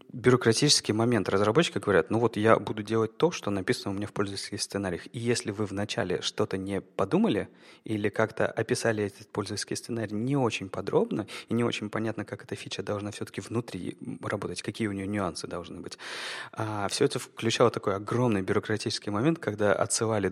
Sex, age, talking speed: male, 30-49, 175 wpm